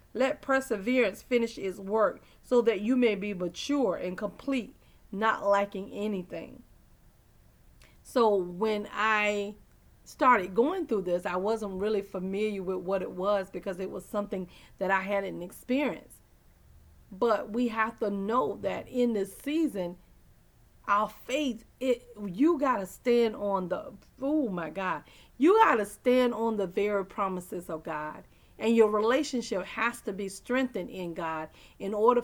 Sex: female